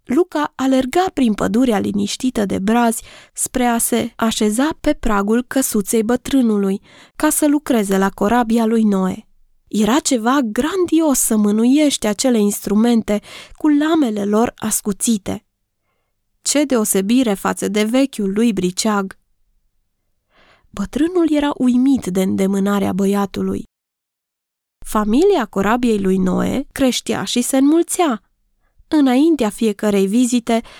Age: 20-39